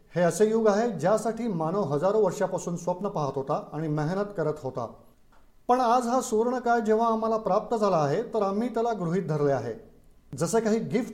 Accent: native